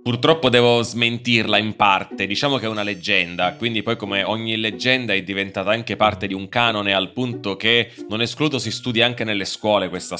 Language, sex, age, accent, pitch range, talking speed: Italian, male, 20-39, native, 95-110 Hz, 195 wpm